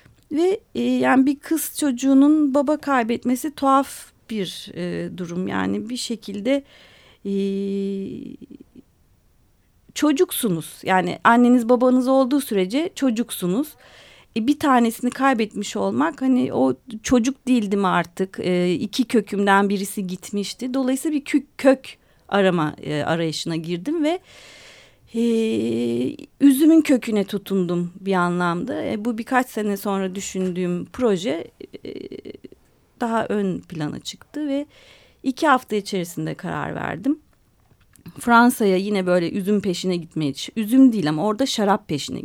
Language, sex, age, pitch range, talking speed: Turkish, female, 40-59, 180-265 Hz, 120 wpm